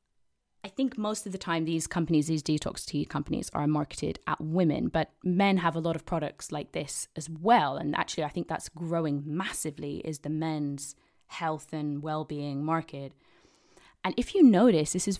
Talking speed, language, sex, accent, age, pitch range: 185 wpm, English, female, British, 20-39, 155-210 Hz